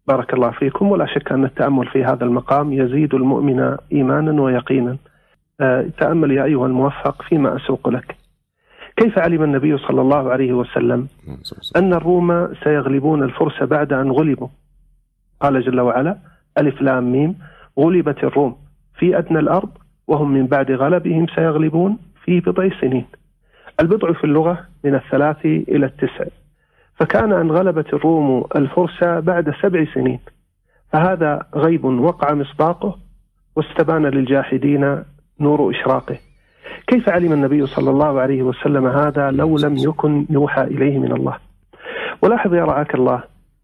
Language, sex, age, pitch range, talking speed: Arabic, male, 40-59, 135-170 Hz, 130 wpm